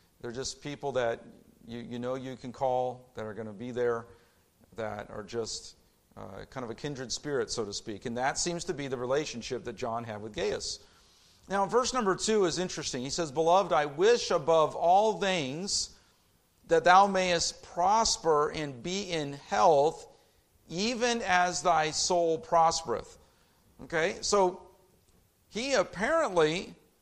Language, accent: English, American